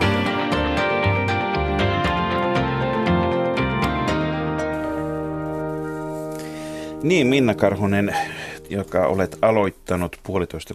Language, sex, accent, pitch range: Finnish, male, native, 80-110 Hz